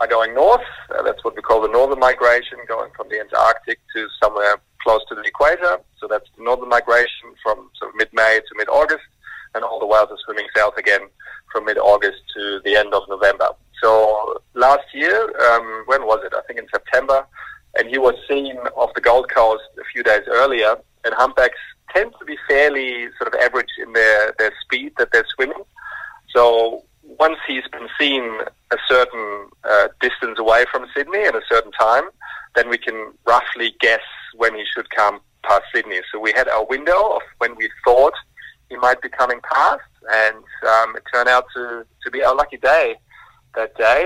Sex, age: male, 40-59